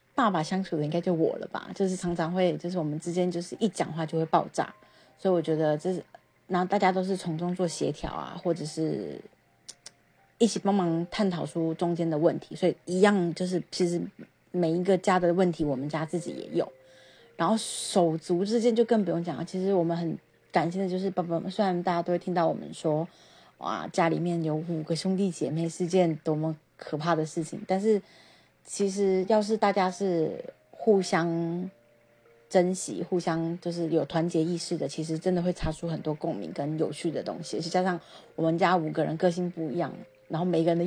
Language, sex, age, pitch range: Chinese, female, 30-49, 165-190 Hz